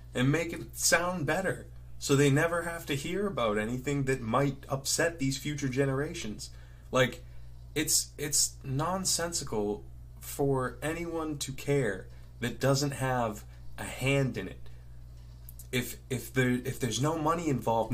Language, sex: English, male